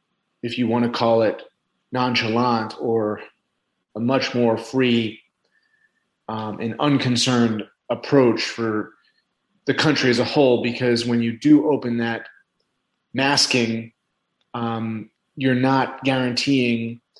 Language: English